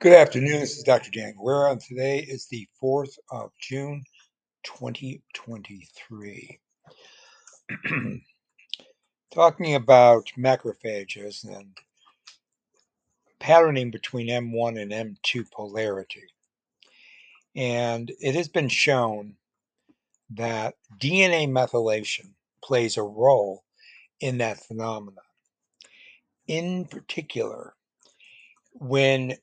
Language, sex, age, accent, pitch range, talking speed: English, male, 60-79, American, 110-140 Hz, 85 wpm